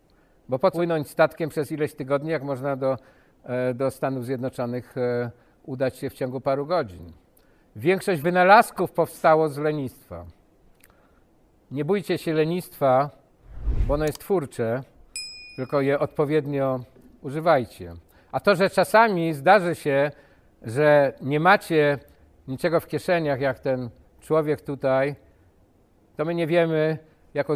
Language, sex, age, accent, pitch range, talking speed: Polish, male, 50-69, native, 130-165 Hz, 120 wpm